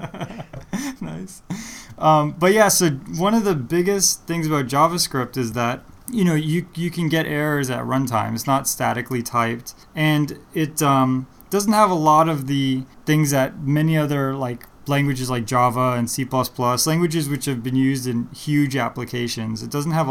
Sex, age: male, 20-39